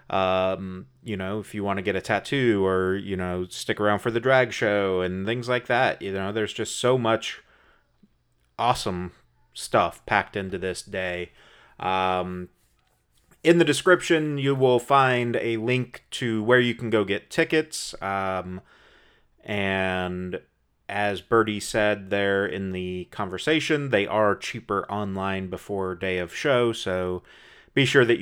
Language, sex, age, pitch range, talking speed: English, male, 30-49, 95-120 Hz, 155 wpm